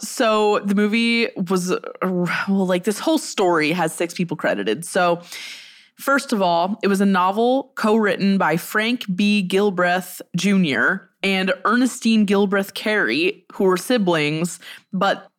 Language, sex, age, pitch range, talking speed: English, female, 20-39, 165-210 Hz, 135 wpm